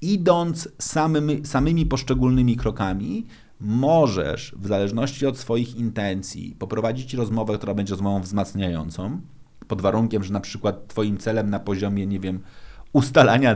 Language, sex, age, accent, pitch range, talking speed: Polish, male, 30-49, native, 100-125 Hz, 130 wpm